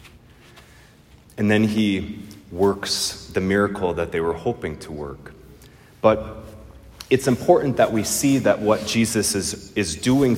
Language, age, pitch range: English, 30-49, 95-110 Hz